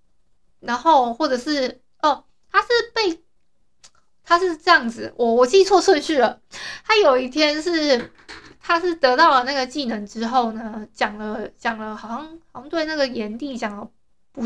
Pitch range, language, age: 235-320 Hz, Chinese, 20-39